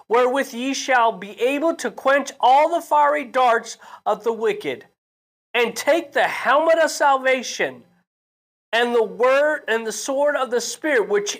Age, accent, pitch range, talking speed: 40-59, American, 215-300 Hz, 160 wpm